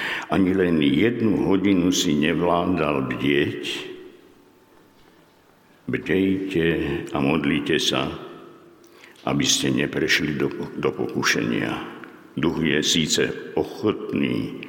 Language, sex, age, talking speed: Slovak, male, 60-79, 80 wpm